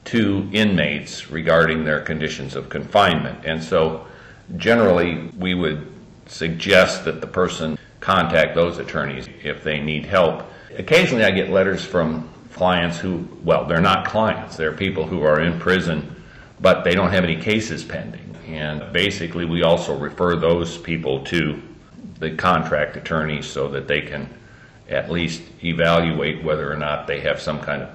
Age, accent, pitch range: 50-69, American, 75-85 Hz